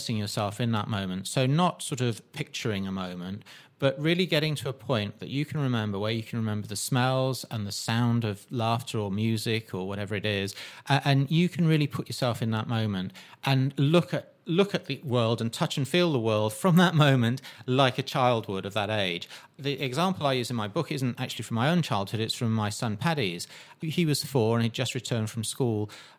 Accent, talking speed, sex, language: British, 220 wpm, male, English